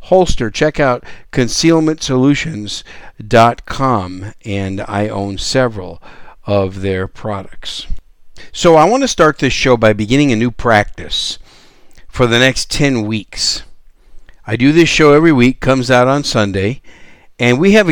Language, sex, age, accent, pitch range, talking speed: English, male, 60-79, American, 100-140 Hz, 135 wpm